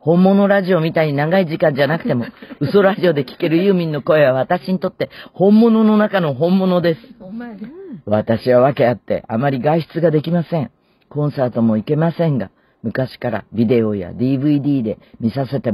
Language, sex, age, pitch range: Japanese, female, 40-59, 120-170 Hz